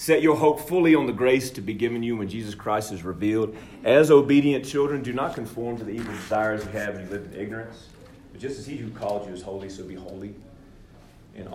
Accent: American